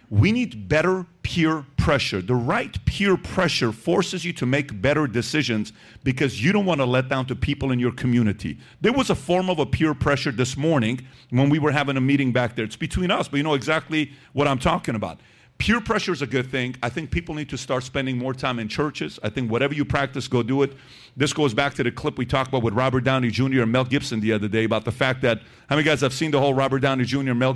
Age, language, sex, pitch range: 40-59, English, male, 120-150 Hz